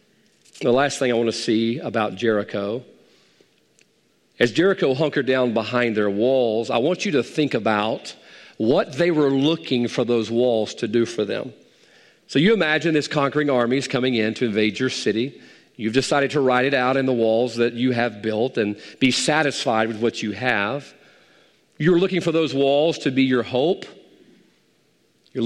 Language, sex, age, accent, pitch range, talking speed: English, male, 40-59, American, 120-195 Hz, 180 wpm